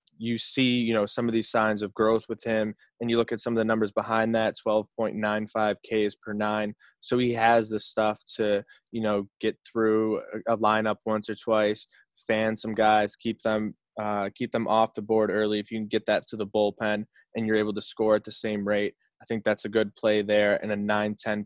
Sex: male